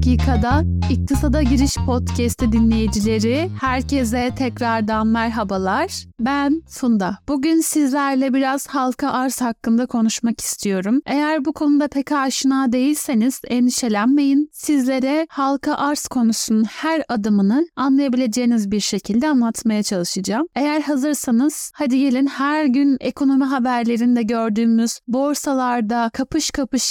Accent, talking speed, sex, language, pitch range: native, 105 wpm, female, Turkish, 230-290 Hz